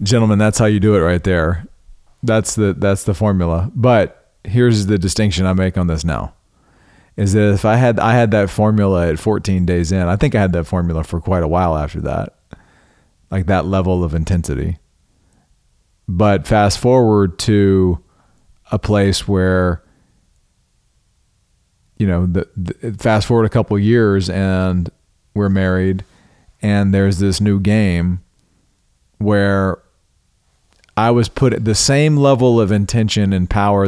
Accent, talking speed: American, 160 wpm